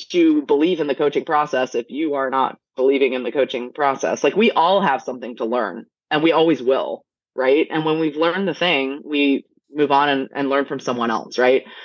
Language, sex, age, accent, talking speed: English, female, 20-39, American, 220 wpm